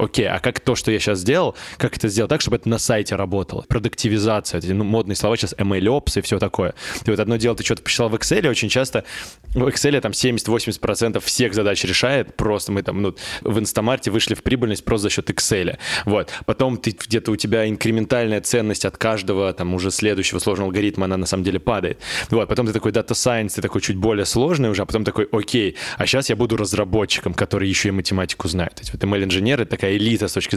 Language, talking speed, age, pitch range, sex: Russian, 220 wpm, 20-39, 100-115 Hz, male